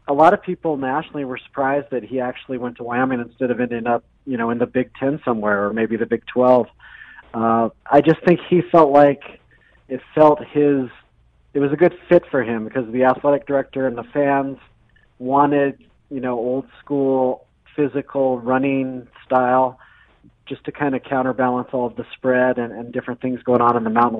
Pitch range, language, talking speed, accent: 120-140 Hz, English, 195 wpm, American